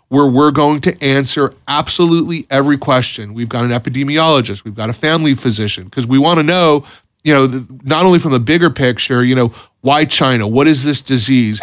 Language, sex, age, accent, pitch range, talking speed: English, male, 30-49, American, 130-155 Hz, 195 wpm